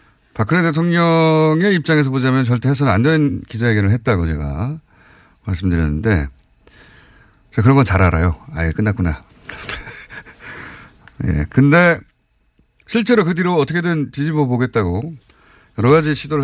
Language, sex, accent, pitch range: Korean, male, native, 100-145 Hz